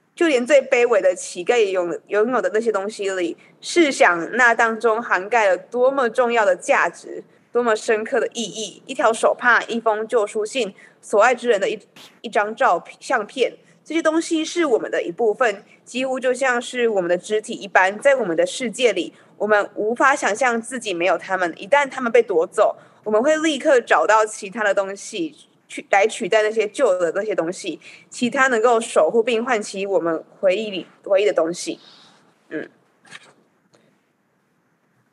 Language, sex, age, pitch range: Chinese, female, 20-39, 200-275 Hz